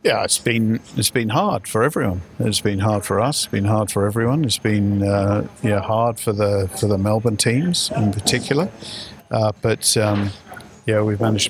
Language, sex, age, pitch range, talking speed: English, male, 50-69, 105-115 Hz, 195 wpm